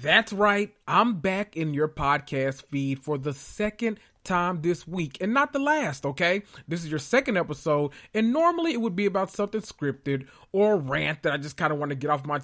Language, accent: English, American